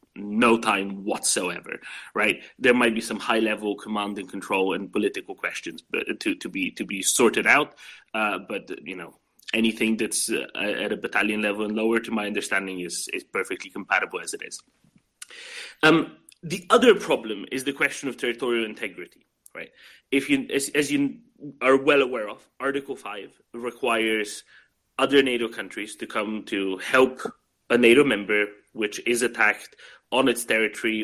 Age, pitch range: 30-49, 105-145 Hz